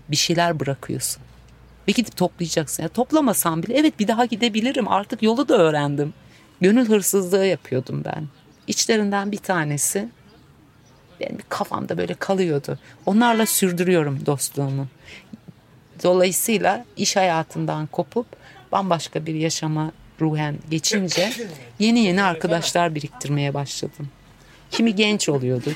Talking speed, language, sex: 110 wpm, Turkish, female